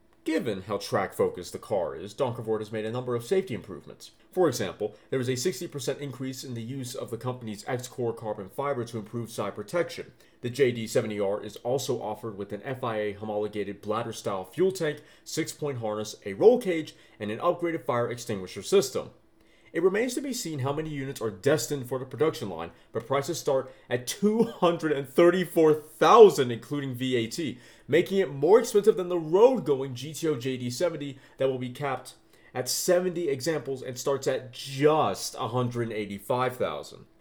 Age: 30-49